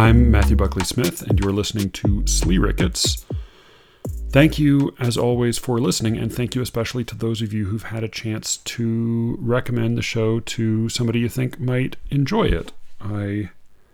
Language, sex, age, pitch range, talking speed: English, male, 40-59, 90-115 Hz, 170 wpm